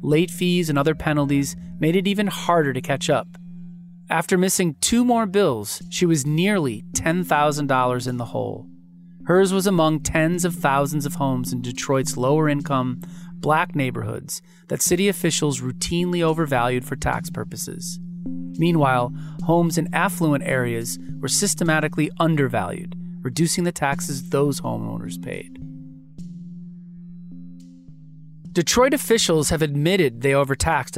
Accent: American